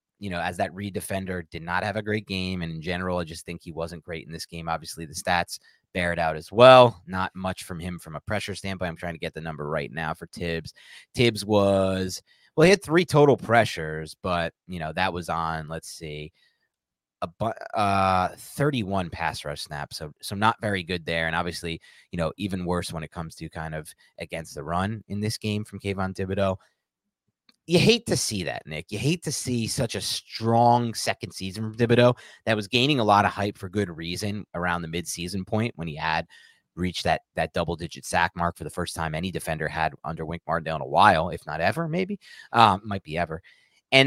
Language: English